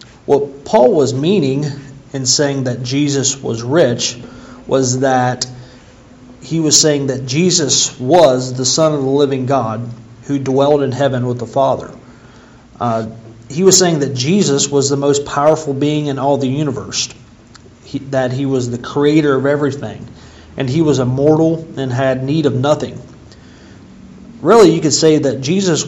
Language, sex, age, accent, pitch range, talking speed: English, male, 40-59, American, 125-145 Hz, 160 wpm